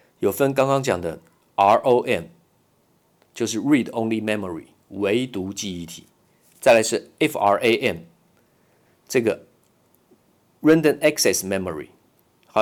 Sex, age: male, 50-69